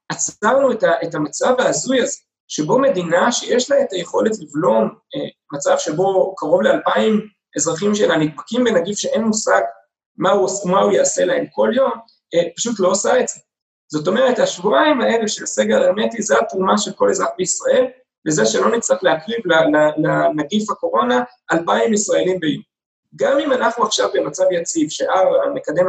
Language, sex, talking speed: Hebrew, male, 165 wpm